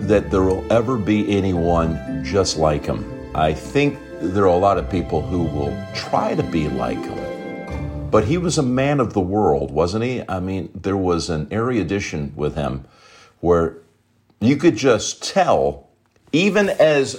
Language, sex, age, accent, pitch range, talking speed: English, male, 50-69, American, 90-130 Hz, 170 wpm